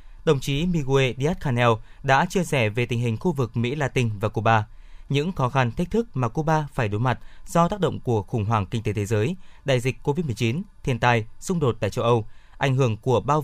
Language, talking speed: Vietnamese, 225 wpm